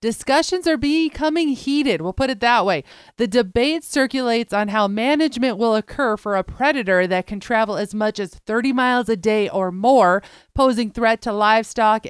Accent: American